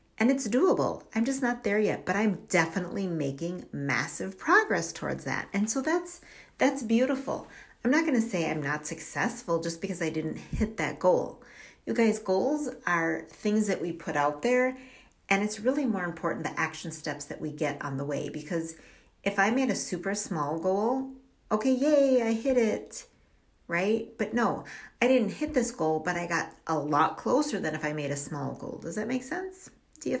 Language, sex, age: English, female, 40-59